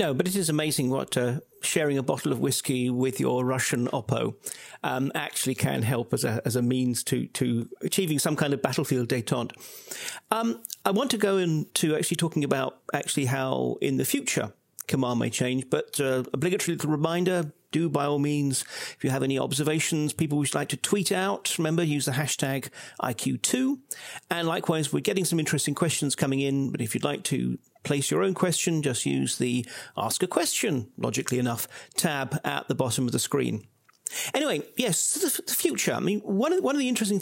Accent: British